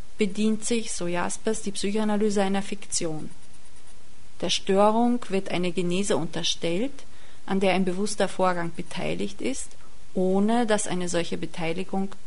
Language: German